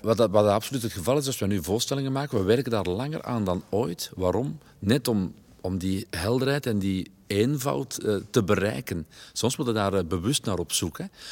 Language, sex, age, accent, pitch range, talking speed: Dutch, male, 50-69, Dutch, 100-115 Hz, 205 wpm